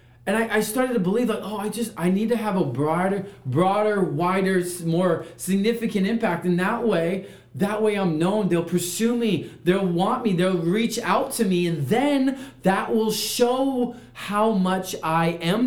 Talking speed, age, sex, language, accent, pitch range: 185 wpm, 30-49, male, English, American, 120-190 Hz